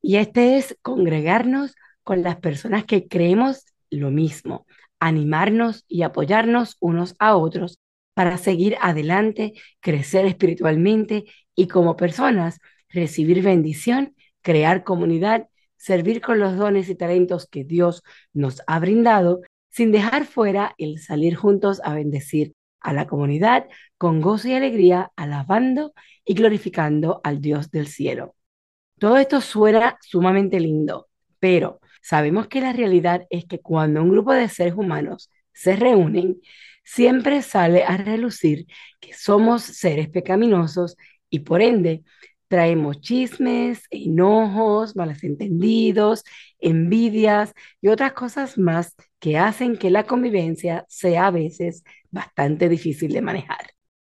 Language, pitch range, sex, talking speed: Spanish, 170-220 Hz, female, 125 wpm